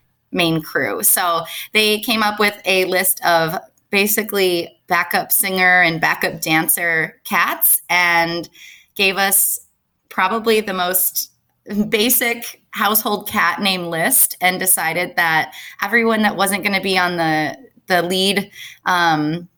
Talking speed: 130 wpm